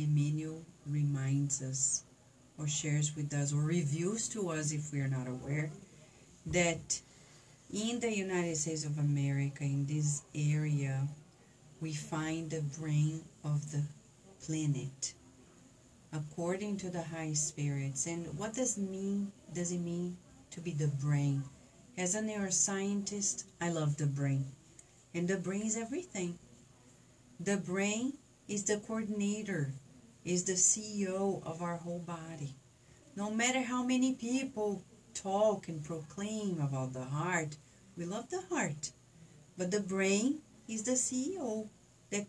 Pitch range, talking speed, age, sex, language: 145-205 Hz, 135 wpm, 40-59, female, English